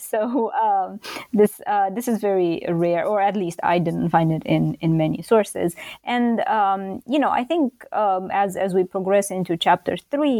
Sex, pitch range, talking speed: female, 175-225 Hz, 190 wpm